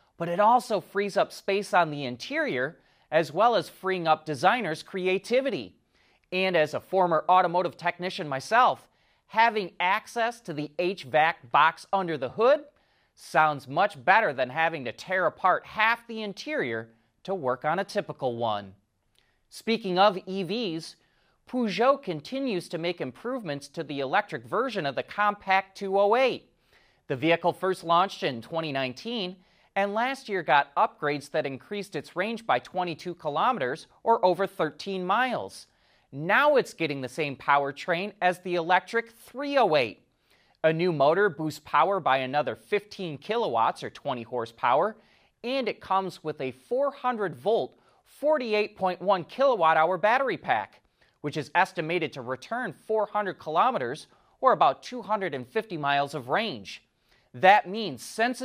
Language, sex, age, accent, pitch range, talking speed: English, male, 30-49, American, 150-210 Hz, 140 wpm